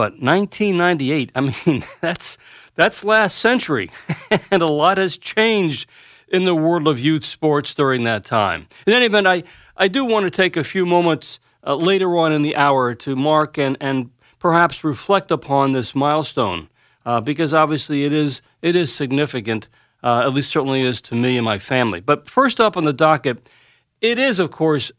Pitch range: 140-185 Hz